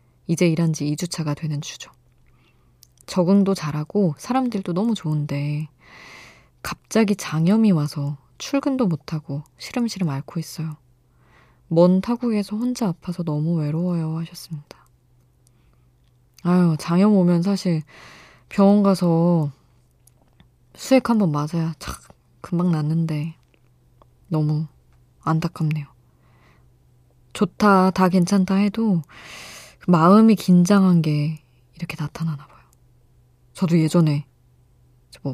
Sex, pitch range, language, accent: female, 135-175 Hz, Korean, native